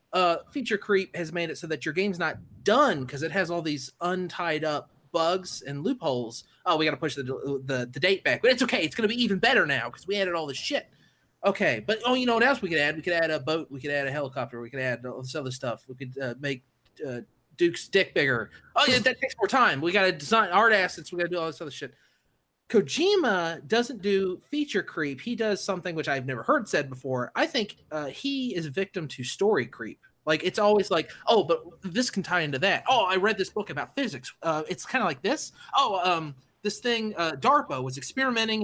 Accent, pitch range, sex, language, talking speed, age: American, 145-220 Hz, male, English, 245 wpm, 30-49